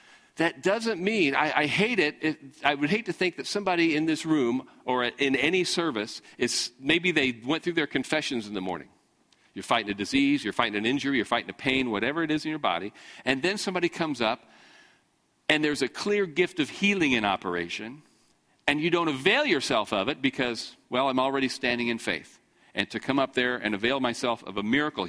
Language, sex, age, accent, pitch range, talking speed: English, male, 50-69, American, 130-190 Hz, 215 wpm